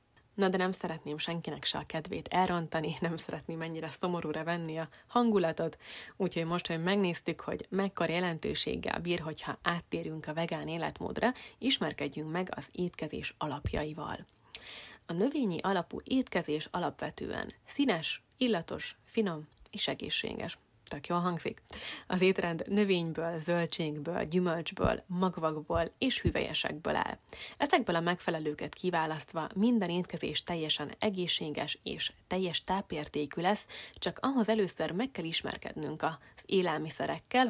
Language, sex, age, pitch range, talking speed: Hungarian, female, 30-49, 160-190 Hz, 120 wpm